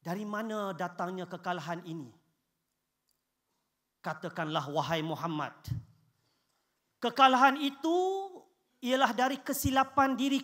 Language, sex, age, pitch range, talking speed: Malay, male, 40-59, 160-265 Hz, 80 wpm